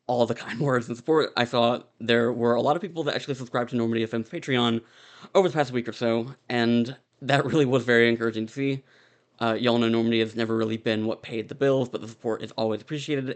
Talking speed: 235 wpm